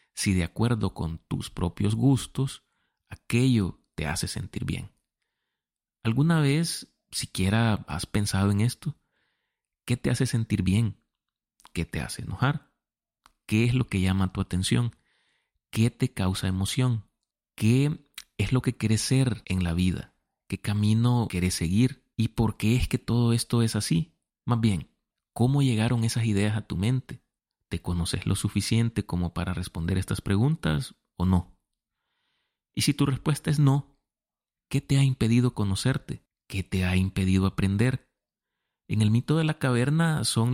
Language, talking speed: Spanish, 155 wpm